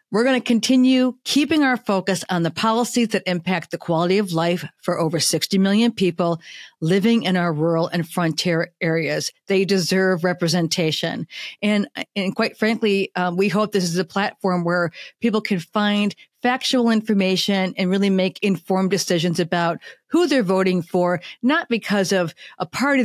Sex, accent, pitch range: female, American, 180-230 Hz